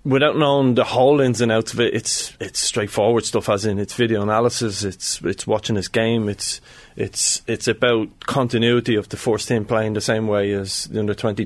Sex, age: male, 20-39